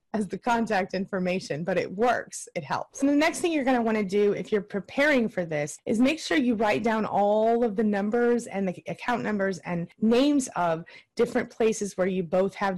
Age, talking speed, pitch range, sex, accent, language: 30-49, 205 wpm, 175-225 Hz, female, American, English